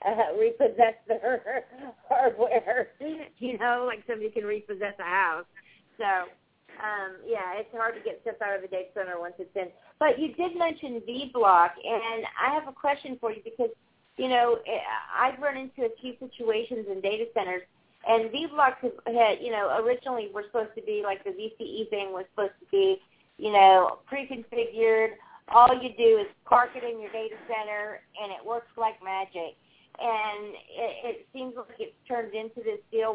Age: 40-59